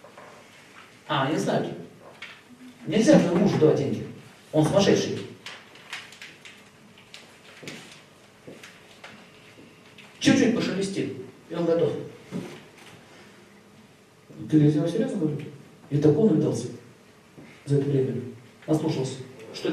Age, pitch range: 50-69, 130-195 Hz